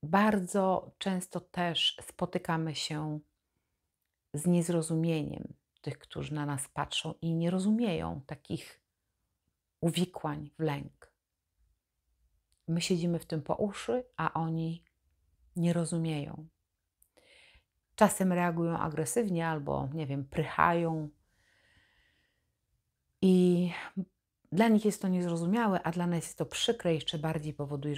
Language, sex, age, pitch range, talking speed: Polish, female, 40-59, 150-180 Hz, 110 wpm